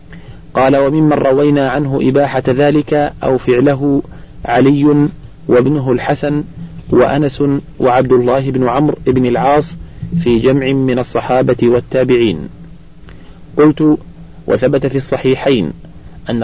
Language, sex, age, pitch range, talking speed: Arabic, male, 40-59, 125-145 Hz, 100 wpm